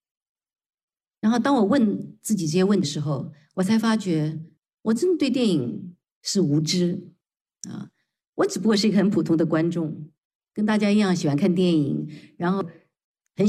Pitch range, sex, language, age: 160-220 Hz, female, Chinese, 50-69